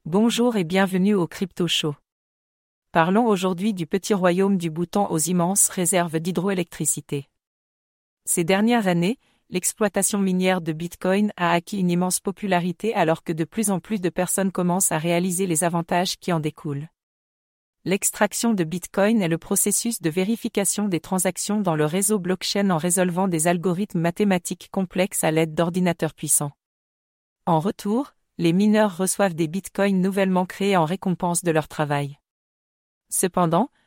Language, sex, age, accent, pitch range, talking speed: English, female, 40-59, French, 165-195 Hz, 150 wpm